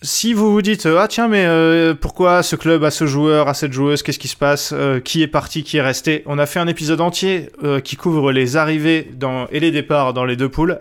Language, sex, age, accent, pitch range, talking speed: French, male, 20-39, French, 130-165 Hz, 270 wpm